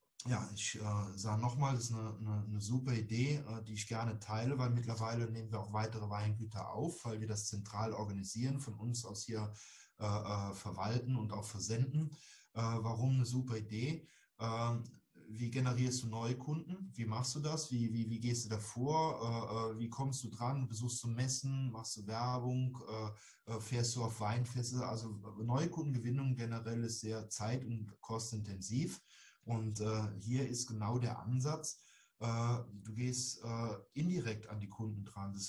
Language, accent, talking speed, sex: German, German, 170 wpm, male